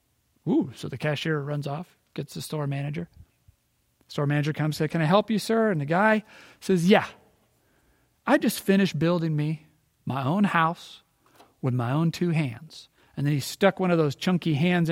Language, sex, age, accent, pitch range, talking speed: English, male, 40-59, American, 140-185 Hz, 185 wpm